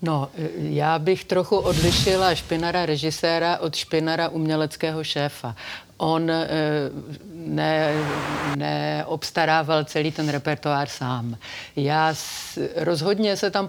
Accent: native